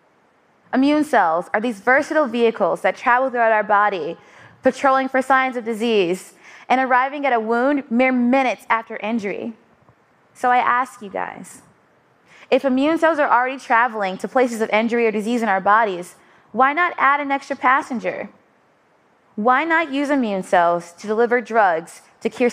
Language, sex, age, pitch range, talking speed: Arabic, female, 20-39, 215-265 Hz, 160 wpm